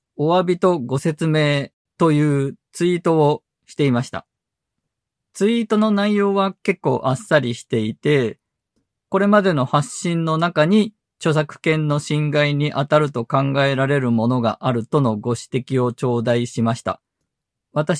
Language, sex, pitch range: Japanese, male, 125-170 Hz